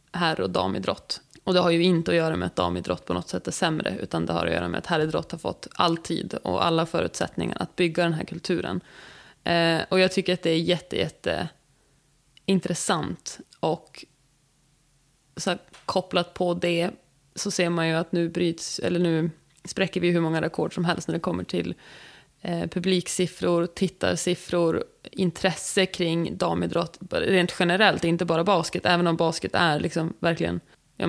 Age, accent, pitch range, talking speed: 20-39, native, 155-175 Hz, 165 wpm